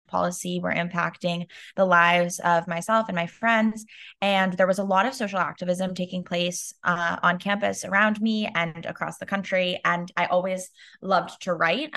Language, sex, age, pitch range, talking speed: English, female, 20-39, 170-195 Hz, 175 wpm